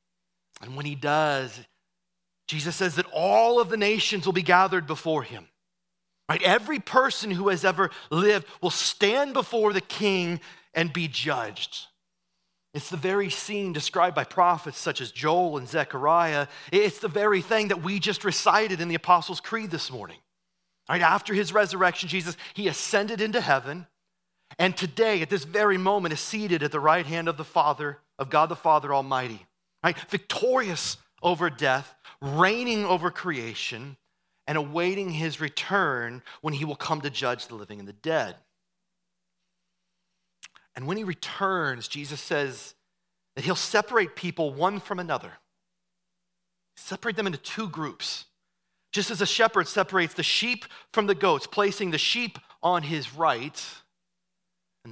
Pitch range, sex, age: 155-195 Hz, male, 30-49